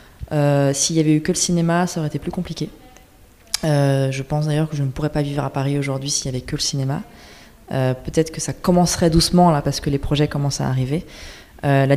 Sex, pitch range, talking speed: female, 140-165 Hz, 240 wpm